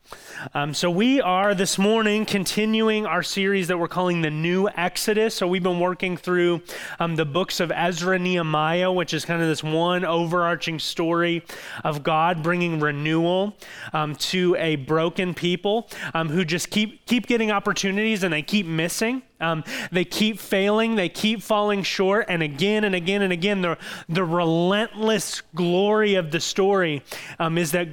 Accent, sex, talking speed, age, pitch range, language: American, male, 170 wpm, 30-49, 165-200 Hz, English